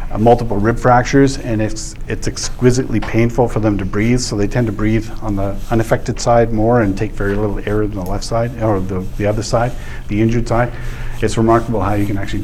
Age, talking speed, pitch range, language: 40-59, 215 wpm, 100-120 Hz, English